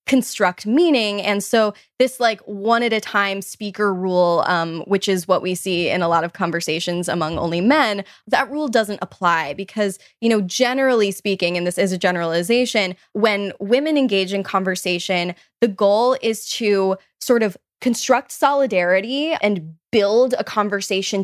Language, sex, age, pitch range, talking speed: English, female, 10-29, 185-235 Hz, 160 wpm